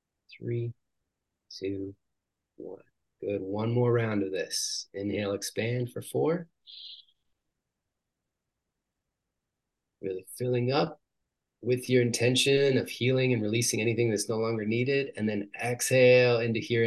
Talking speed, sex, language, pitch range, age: 115 wpm, male, English, 100-120 Hz, 30-49